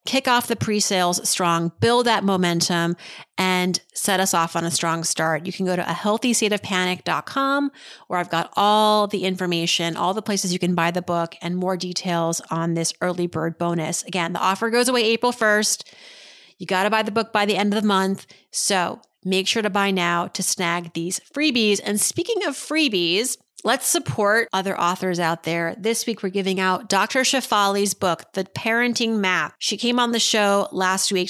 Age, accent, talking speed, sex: 30-49, American, 195 wpm, female